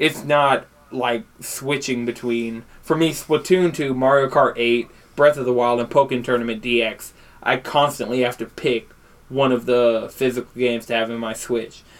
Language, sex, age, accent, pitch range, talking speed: English, male, 20-39, American, 120-145 Hz, 175 wpm